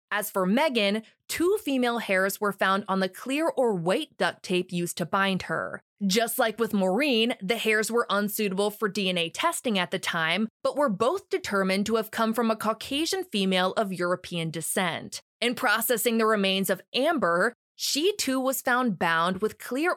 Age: 20-39